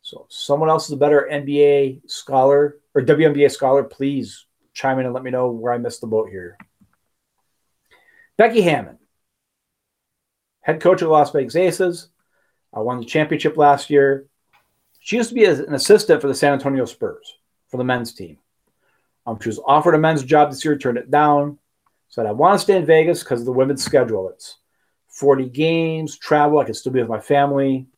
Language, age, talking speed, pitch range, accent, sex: English, 40-59, 195 wpm, 135-175 Hz, American, male